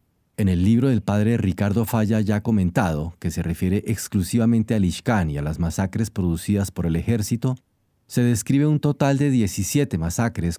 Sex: male